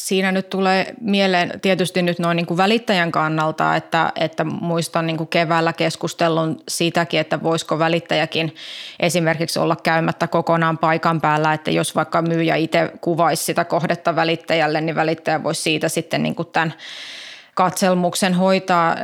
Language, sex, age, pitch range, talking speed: Finnish, female, 20-39, 160-175 Hz, 145 wpm